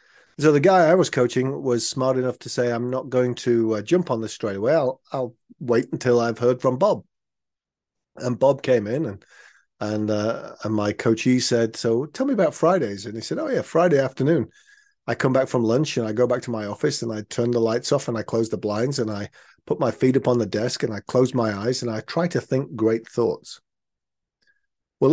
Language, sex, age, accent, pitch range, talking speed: English, male, 40-59, British, 115-140 Hz, 230 wpm